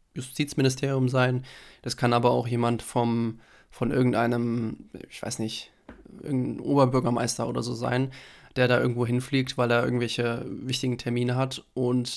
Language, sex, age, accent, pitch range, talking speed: German, male, 20-39, German, 120-130 Hz, 145 wpm